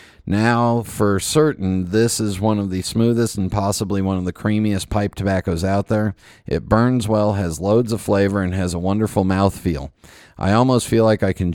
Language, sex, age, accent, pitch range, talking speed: English, male, 40-59, American, 90-110 Hz, 190 wpm